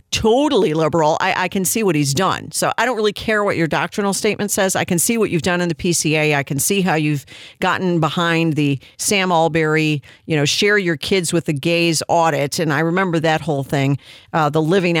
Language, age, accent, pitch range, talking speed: English, 50-69, American, 155-200 Hz, 225 wpm